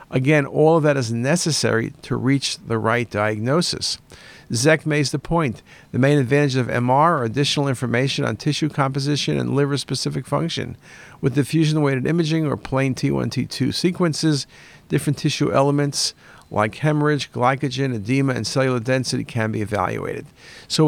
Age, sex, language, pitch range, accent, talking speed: 50-69, male, English, 120-150 Hz, American, 145 wpm